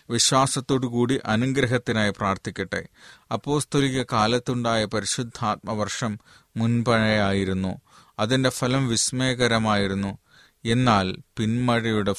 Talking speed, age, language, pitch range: 65 wpm, 30-49, Malayalam, 105-125 Hz